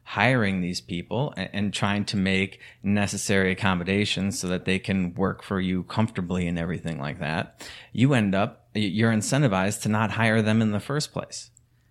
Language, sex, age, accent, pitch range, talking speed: English, male, 30-49, American, 95-115 Hz, 170 wpm